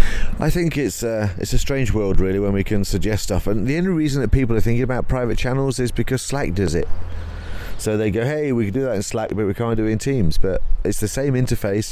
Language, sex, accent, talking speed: English, male, British, 260 wpm